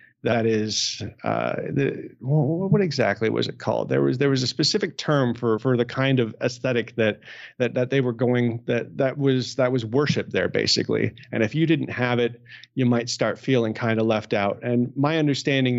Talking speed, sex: 200 wpm, male